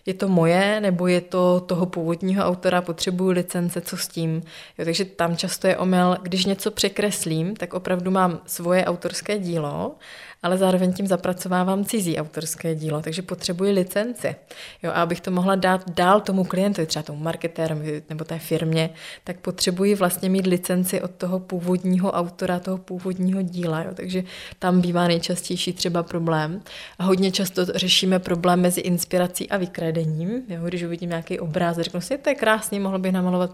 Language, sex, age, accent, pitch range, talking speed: Czech, female, 20-39, native, 165-185 Hz, 165 wpm